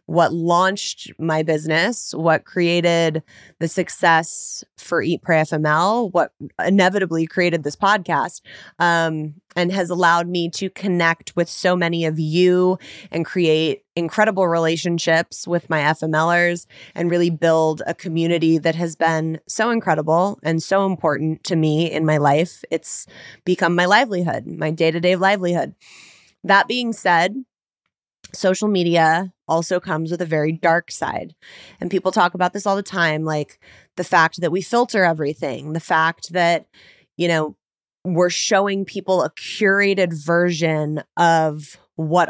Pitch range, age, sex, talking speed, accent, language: 160-185 Hz, 20-39, female, 145 wpm, American, English